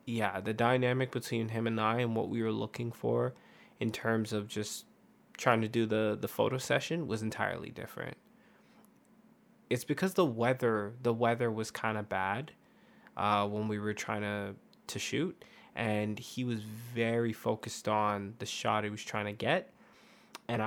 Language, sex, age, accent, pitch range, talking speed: English, male, 20-39, American, 110-130 Hz, 170 wpm